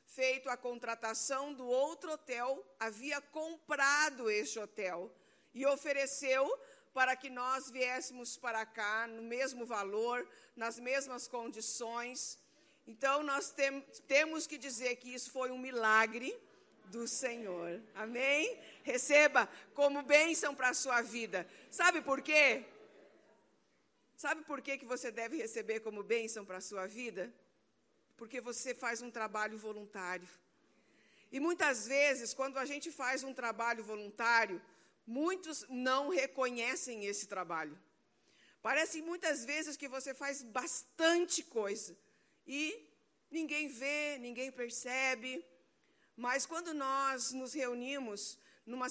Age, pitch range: 50-69, 230-280 Hz